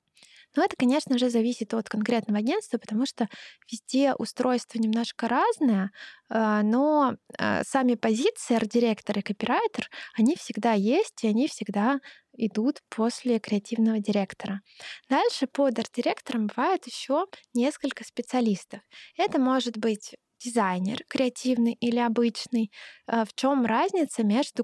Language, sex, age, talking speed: Russian, female, 20-39, 115 wpm